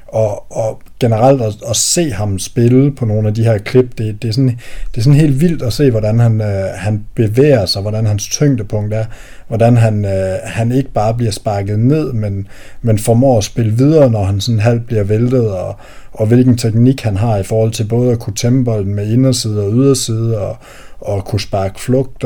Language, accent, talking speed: Danish, native, 210 wpm